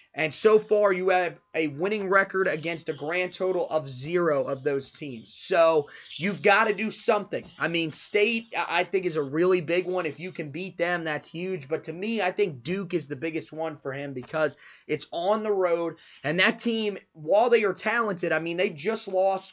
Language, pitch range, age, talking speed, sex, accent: English, 155-195 Hz, 20-39, 210 wpm, male, American